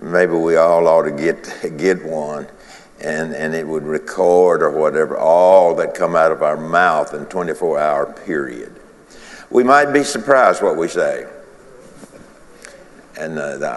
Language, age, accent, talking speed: English, 60-79, American, 155 wpm